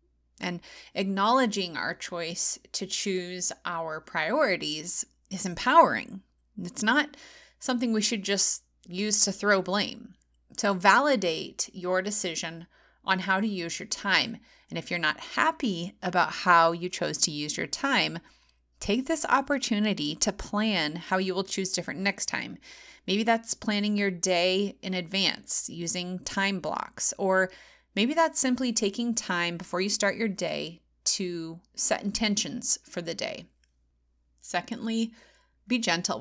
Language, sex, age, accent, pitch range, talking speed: English, female, 30-49, American, 175-225 Hz, 140 wpm